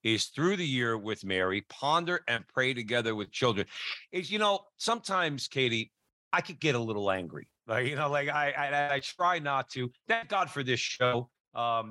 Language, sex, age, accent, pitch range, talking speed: English, male, 50-69, American, 115-155 Hz, 195 wpm